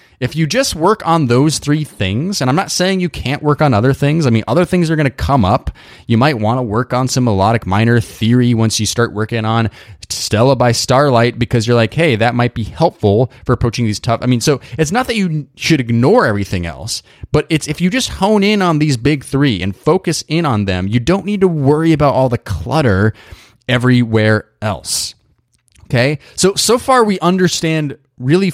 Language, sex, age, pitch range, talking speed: English, male, 20-39, 115-155 Hz, 215 wpm